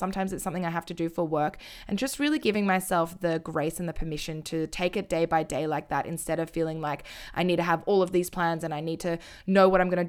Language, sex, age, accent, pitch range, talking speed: English, female, 20-39, Australian, 165-195 Hz, 285 wpm